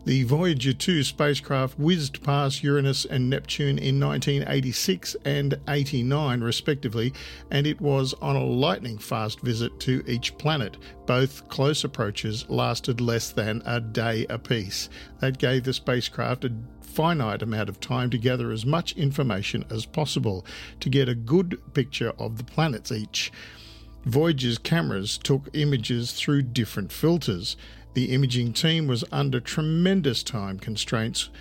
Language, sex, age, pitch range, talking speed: English, male, 50-69, 115-140 Hz, 140 wpm